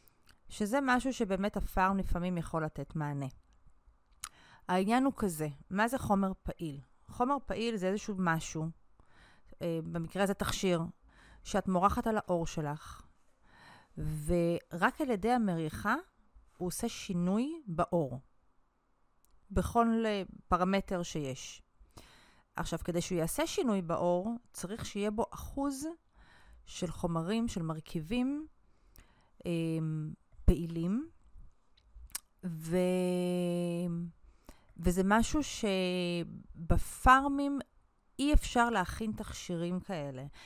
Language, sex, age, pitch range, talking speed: Hebrew, female, 30-49, 170-230 Hz, 95 wpm